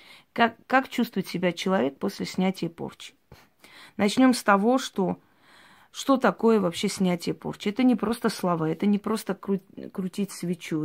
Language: Russian